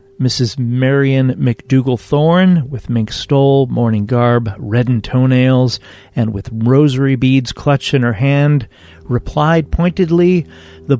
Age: 40-59